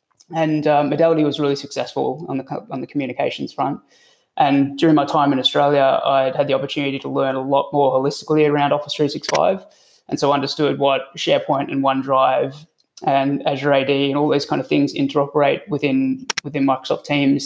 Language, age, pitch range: English, 20-39, 140-150 Hz